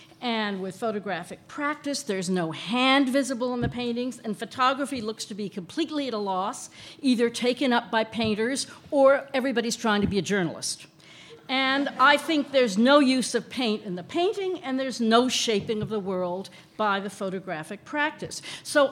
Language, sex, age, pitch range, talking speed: English, female, 50-69, 200-270 Hz, 175 wpm